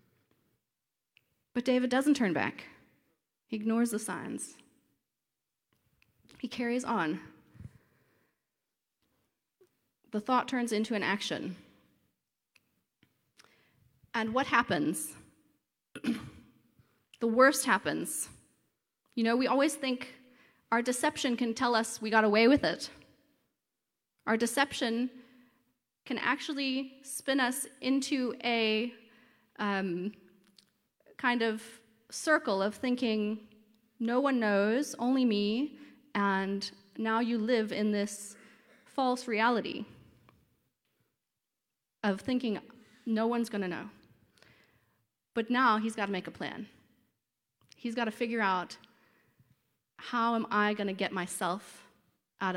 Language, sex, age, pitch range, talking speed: English, female, 30-49, 205-250 Hz, 105 wpm